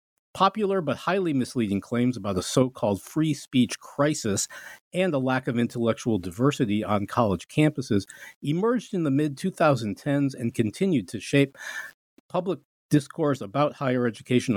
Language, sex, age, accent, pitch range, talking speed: English, male, 50-69, American, 110-145 Hz, 135 wpm